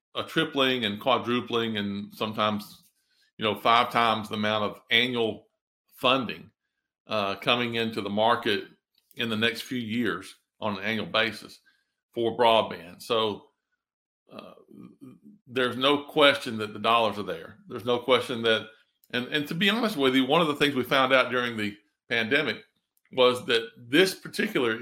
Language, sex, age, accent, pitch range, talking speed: English, male, 50-69, American, 110-125 Hz, 160 wpm